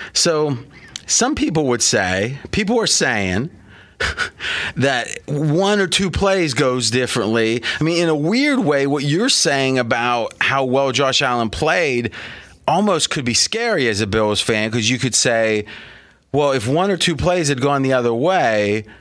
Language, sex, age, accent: English, male, 30-49, American